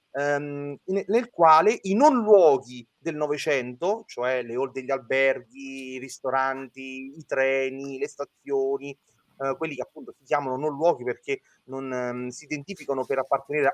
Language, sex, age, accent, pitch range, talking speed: Italian, male, 30-49, native, 140-175 Hz, 150 wpm